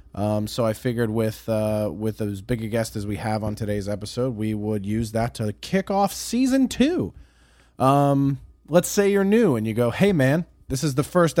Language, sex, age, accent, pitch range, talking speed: English, male, 20-39, American, 105-135 Hz, 210 wpm